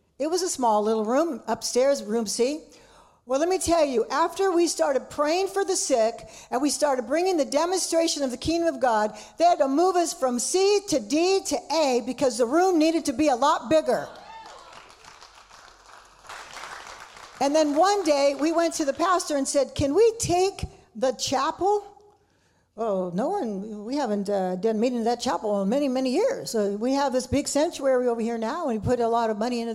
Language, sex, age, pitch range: English, female, 60-79, 230-325 Hz